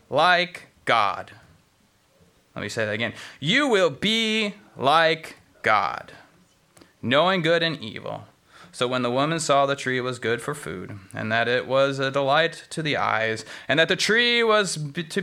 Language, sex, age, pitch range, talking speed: English, male, 30-49, 115-165 Hz, 165 wpm